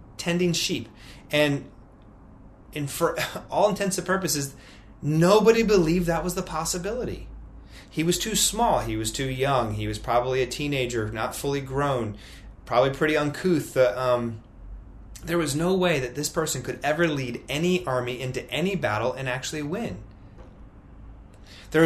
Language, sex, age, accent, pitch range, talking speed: English, male, 30-49, American, 105-155 Hz, 150 wpm